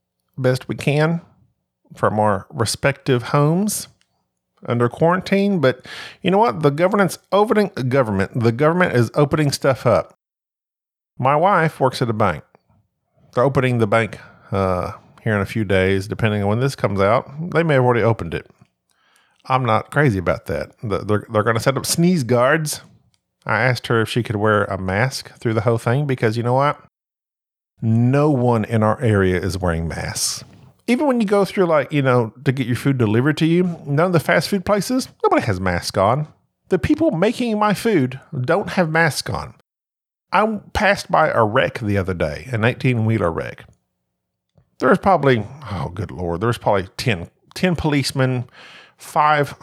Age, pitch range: 40-59, 110-155 Hz